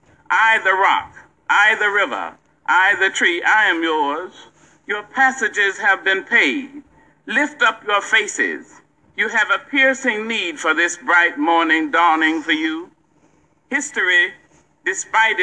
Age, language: 50-69, English